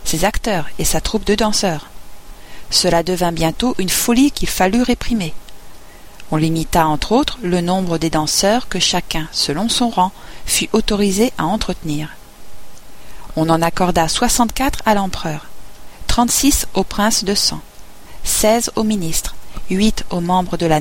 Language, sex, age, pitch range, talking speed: French, female, 40-59, 170-220 Hz, 145 wpm